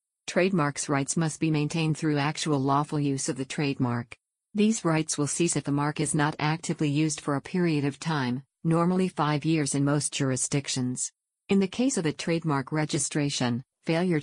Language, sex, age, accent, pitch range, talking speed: English, female, 50-69, American, 145-165 Hz, 175 wpm